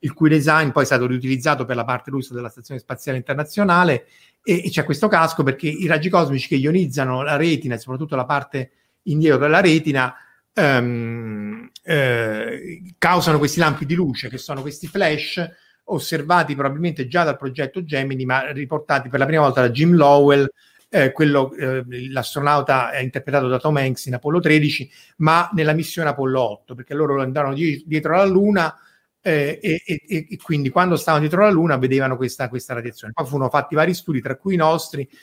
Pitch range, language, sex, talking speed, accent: 130-160 Hz, Italian, male, 175 wpm, native